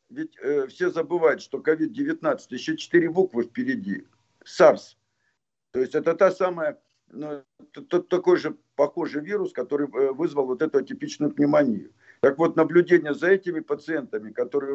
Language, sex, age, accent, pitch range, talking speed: Russian, male, 50-69, native, 120-180 Hz, 150 wpm